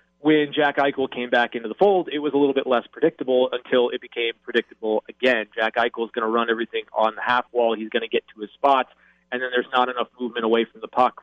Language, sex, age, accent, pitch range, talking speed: English, male, 30-49, American, 115-135 Hz, 255 wpm